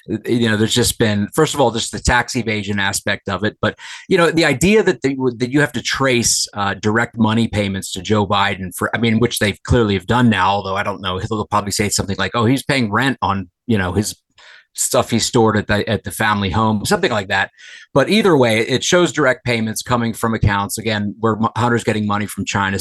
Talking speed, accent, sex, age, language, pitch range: 240 wpm, American, male, 30-49, English, 100-120 Hz